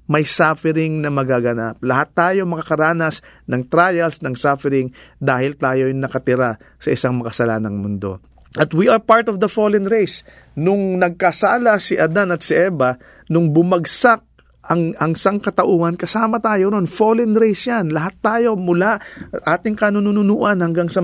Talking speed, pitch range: 150 wpm, 145-195 Hz